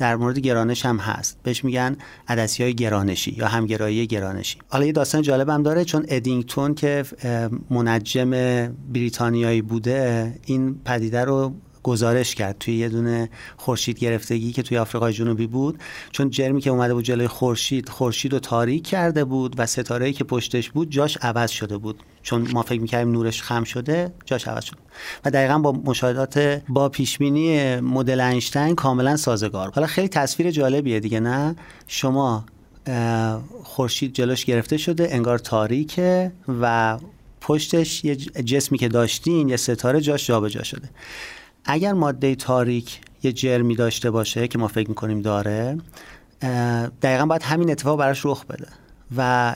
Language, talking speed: Persian, 150 wpm